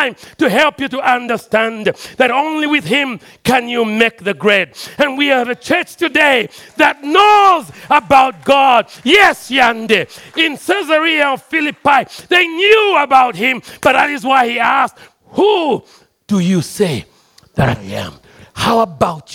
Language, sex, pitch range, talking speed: English, male, 230-315 Hz, 150 wpm